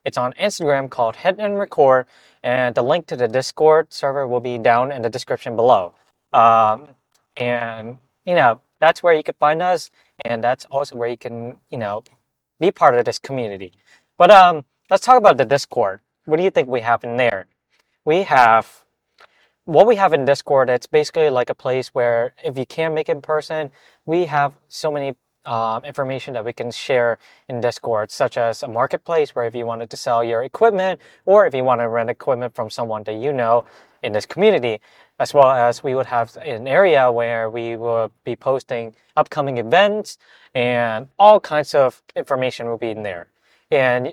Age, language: 20-39, English